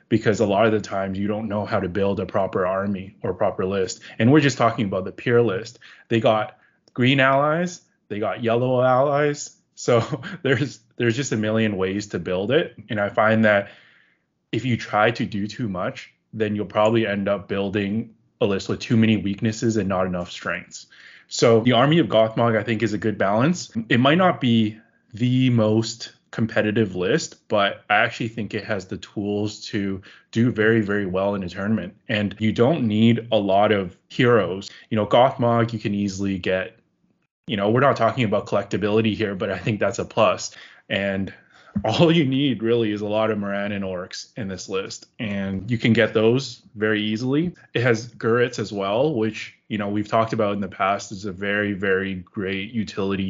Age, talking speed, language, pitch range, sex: 20-39, 200 wpm, English, 100-120 Hz, male